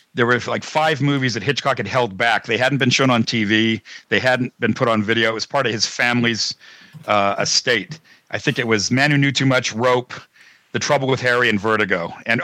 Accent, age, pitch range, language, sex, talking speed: American, 50-69, 125-160 Hz, English, male, 225 wpm